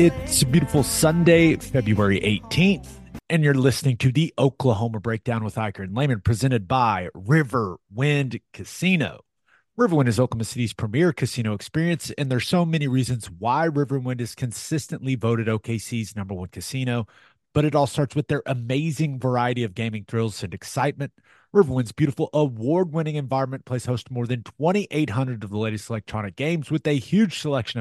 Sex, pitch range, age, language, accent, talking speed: male, 115-150 Hz, 30-49, English, American, 160 wpm